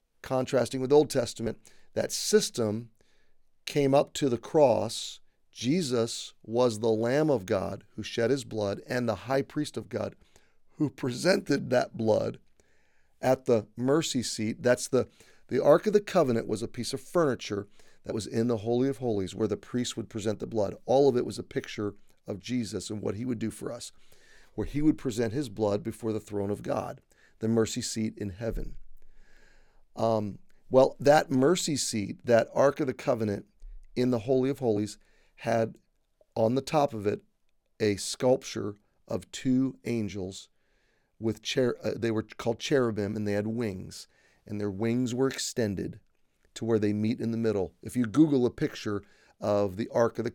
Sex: male